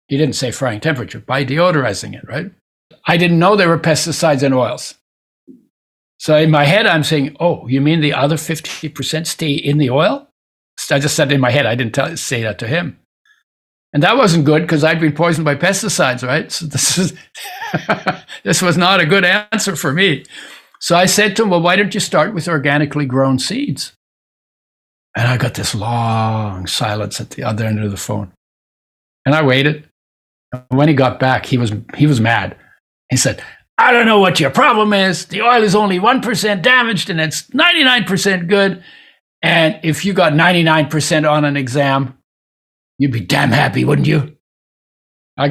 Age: 60-79